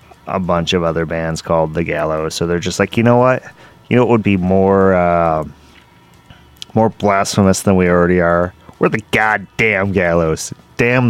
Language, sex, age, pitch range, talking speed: English, male, 20-39, 85-110 Hz, 180 wpm